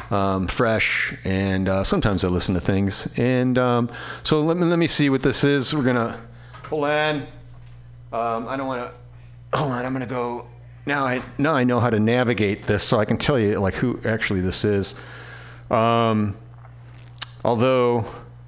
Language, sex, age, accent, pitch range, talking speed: English, male, 40-59, American, 120-145 Hz, 180 wpm